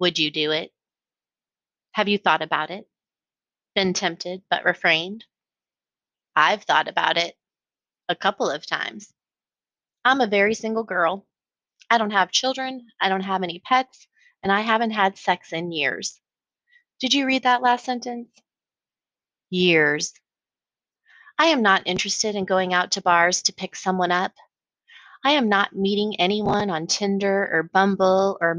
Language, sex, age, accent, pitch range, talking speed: English, female, 30-49, American, 185-240 Hz, 150 wpm